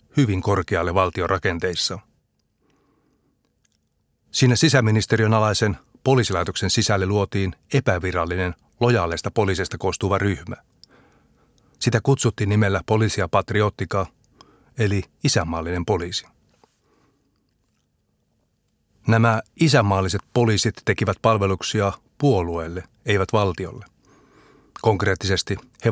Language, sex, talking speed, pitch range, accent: Finnish, male, 75 wpm, 95-110 Hz, native